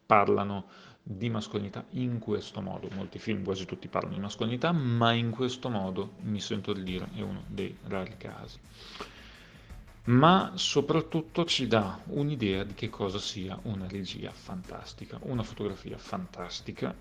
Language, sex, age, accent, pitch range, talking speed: Italian, male, 40-59, native, 100-115 Hz, 145 wpm